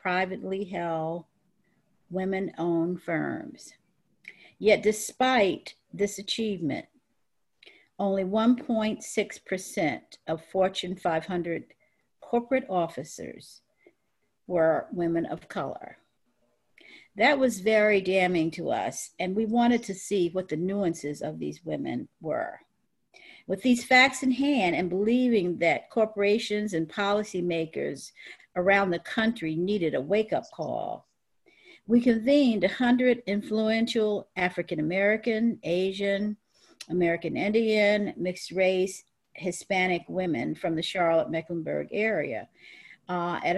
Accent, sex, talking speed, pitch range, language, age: American, female, 105 wpm, 175-220 Hz, English, 50-69